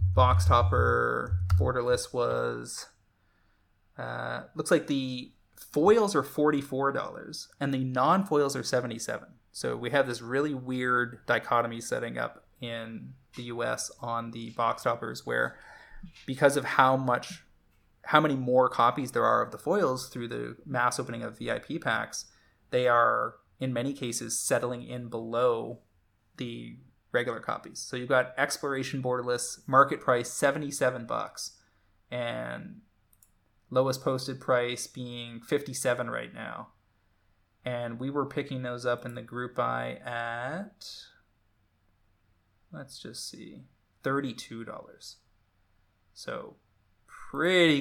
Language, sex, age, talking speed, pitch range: English, male, 20-39, 125 wpm, 100-130 Hz